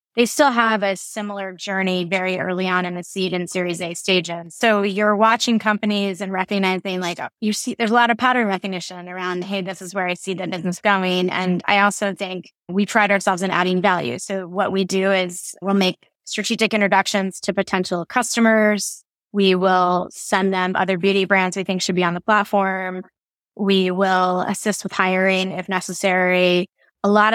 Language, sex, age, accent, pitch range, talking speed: English, female, 20-39, American, 185-210 Hz, 190 wpm